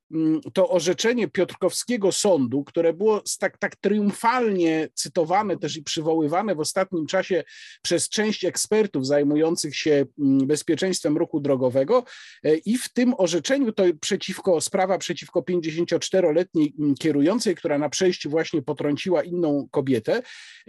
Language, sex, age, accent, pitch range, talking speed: Polish, male, 50-69, native, 155-235 Hz, 115 wpm